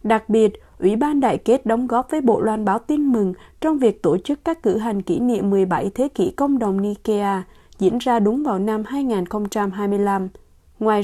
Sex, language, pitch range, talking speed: female, Vietnamese, 205-260 Hz, 195 wpm